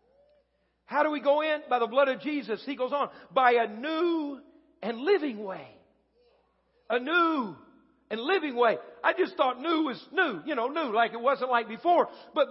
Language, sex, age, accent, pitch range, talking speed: English, male, 50-69, American, 250-310 Hz, 185 wpm